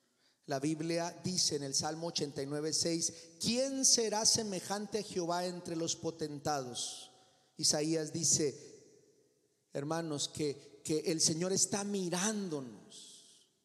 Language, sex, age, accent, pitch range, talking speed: Spanish, male, 40-59, Mexican, 170-235 Hz, 110 wpm